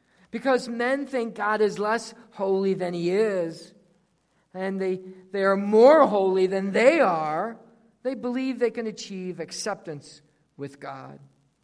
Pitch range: 180-275 Hz